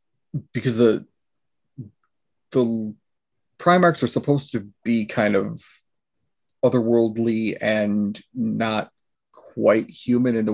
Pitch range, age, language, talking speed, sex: 110-135 Hz, 30-49, English, 95 wpm, male